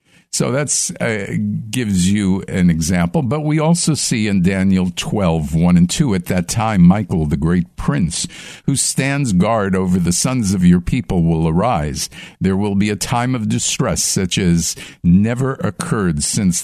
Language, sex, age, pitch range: English, male, 50-69, 90-140 Hz